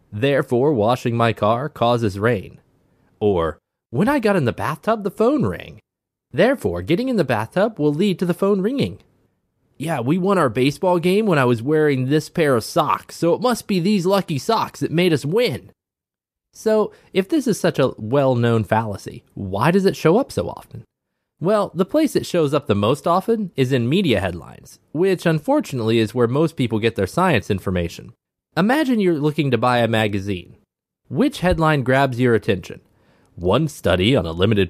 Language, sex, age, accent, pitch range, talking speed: English, male, 20-39, American, 110-180 Hz, 185 wpm